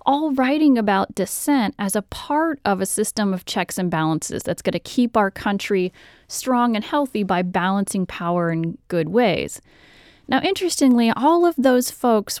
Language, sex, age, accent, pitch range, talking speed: English, female, 30-49, American, 185-250 Hz, 170 wpm